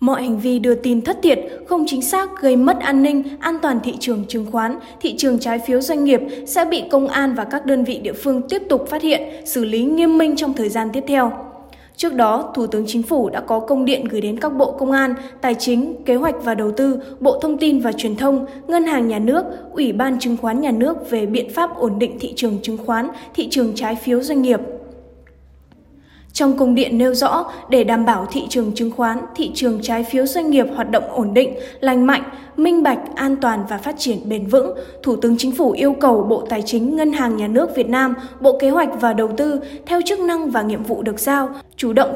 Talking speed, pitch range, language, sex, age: 240 wpm, 235-280 Hz, Vietnamese, female, 10-29